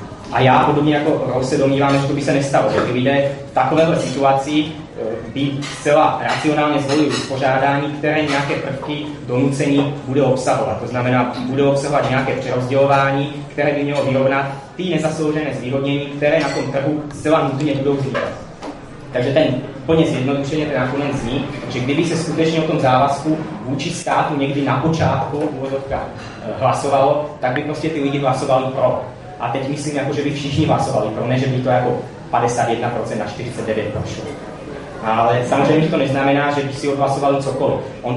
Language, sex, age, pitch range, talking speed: Czech, male, 20-39, 125-145 Hz, 165 wpm